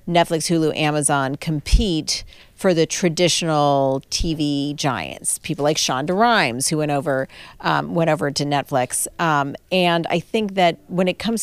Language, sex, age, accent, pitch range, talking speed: English, female, 40-59, American, 140-180 Hz, 140 wpm